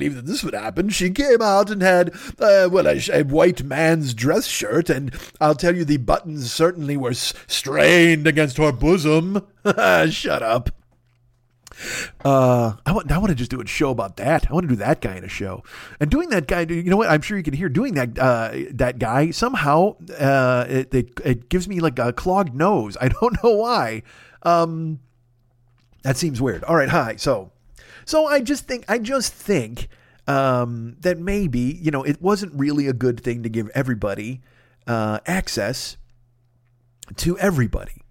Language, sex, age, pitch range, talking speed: English, male, 40-59, 125-185 Hz, 185 wpm